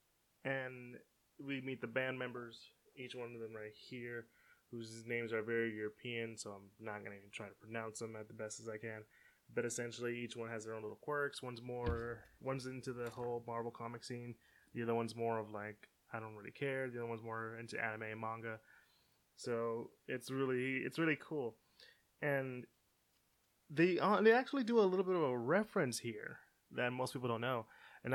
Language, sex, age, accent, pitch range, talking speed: English, male, 20-39, American, 110-130 Hz, 200 wpm